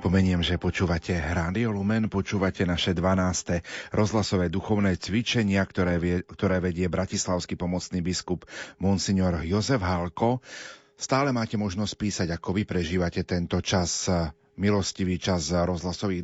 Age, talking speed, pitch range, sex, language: 40-59, 120 wpm, 90-105 Hz, male, Slovak